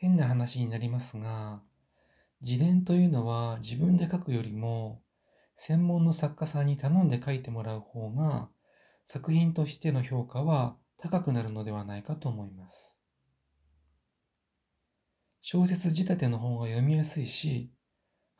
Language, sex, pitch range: Japanese, male, 115-155 Hz